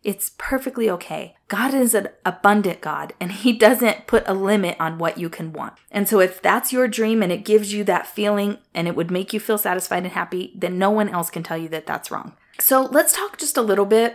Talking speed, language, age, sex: 240 wpm, English, 30-49, female